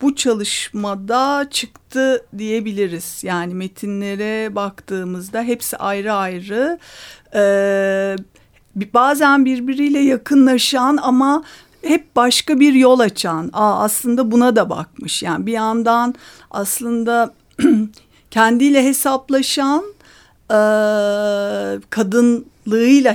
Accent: native